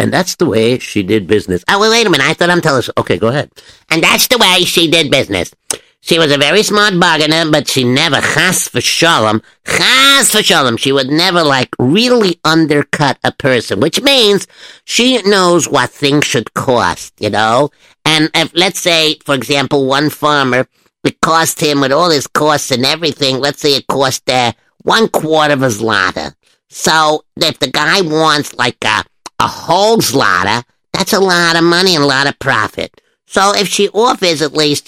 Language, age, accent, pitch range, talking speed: English, 50-69, American, 135-180 Hz, 195 wpm